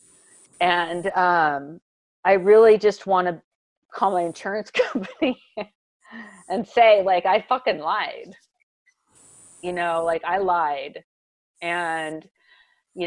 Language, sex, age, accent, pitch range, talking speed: English, female, 40-59, American, 170-220 Hz, 110 wpm